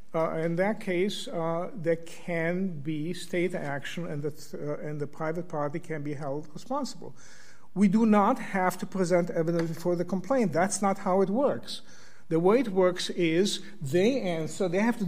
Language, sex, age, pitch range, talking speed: English, male, 50-69, 150-200 Hz, 180 wpm